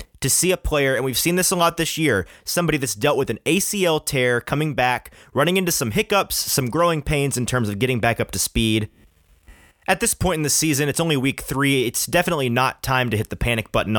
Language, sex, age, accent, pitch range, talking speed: English, male, 30-49, American, 110-145 Hz, 235 wpm